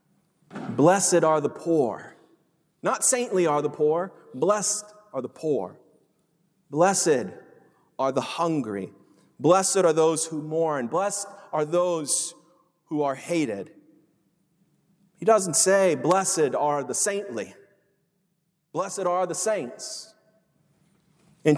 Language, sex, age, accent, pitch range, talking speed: English, male, 30-49, American, 165-210 Hz, 110 wpm